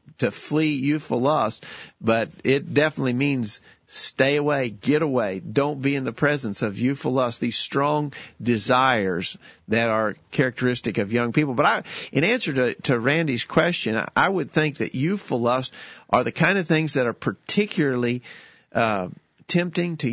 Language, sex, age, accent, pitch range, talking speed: English, male, 50-69, American, 120-150 Hz, 160 wpm